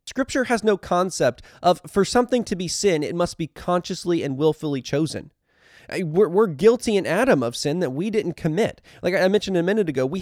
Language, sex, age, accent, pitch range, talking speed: English, male, 20-39, American, 160-215 Hz, 205 wpm